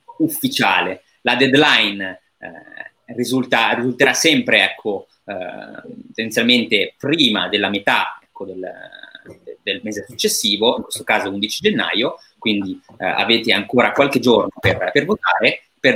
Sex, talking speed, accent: male, 115 wpm, native